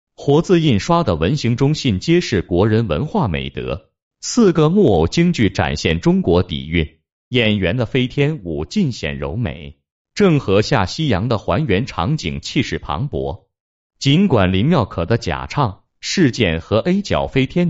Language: Chinese